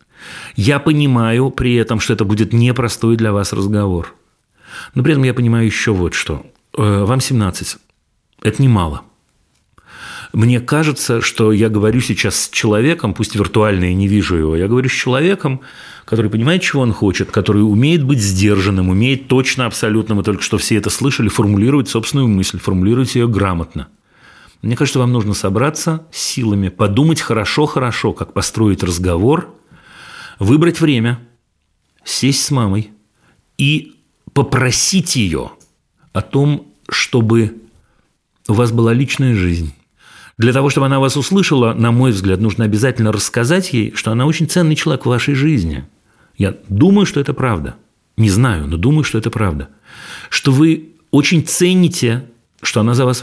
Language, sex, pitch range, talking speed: Russian, male, 105-135 Hz, 150 wpm